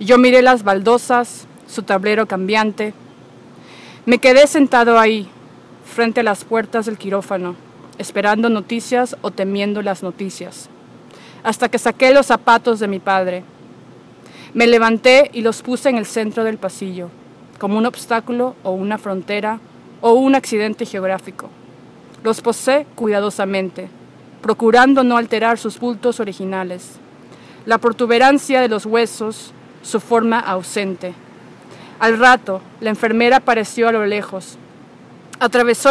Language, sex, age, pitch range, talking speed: Spanish, female, 30-49, 200-240 Hz, 130 wpm